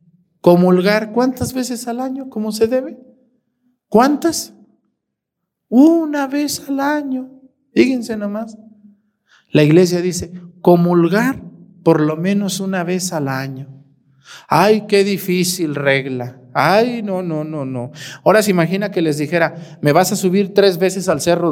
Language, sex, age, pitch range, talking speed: Spanish, male, 50-69, 130-220 Hz, 135 wpm